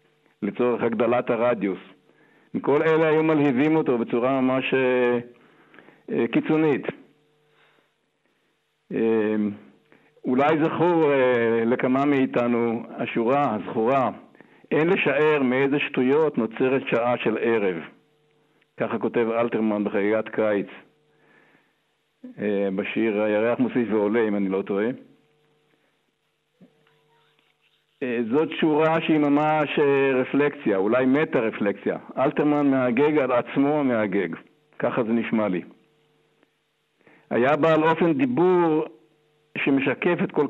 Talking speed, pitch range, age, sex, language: 95 wpm, 115-150 Hz, 60-79, male, Hebrew